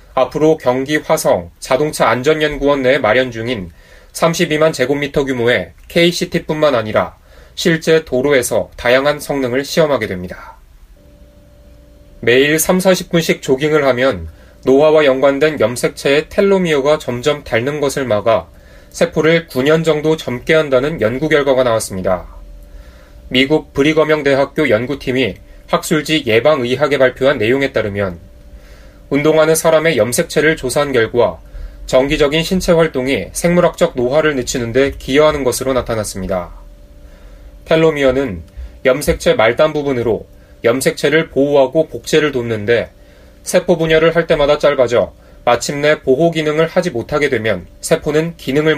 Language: Korean